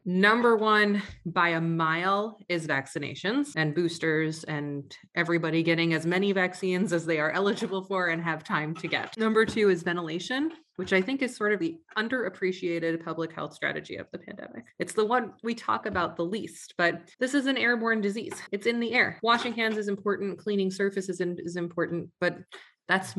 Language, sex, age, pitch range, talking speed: English, female, 20-39, 155-195 Hz, 185 wpm